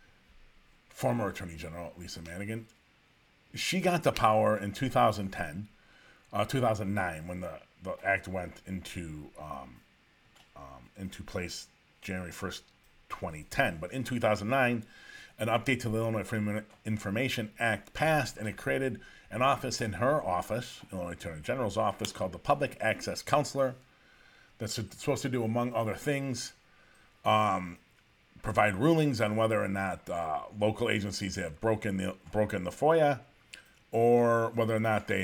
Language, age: English, 40-59